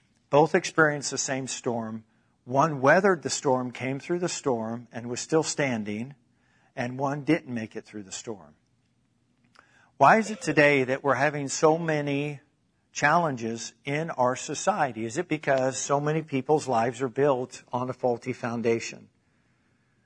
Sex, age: male, 50-69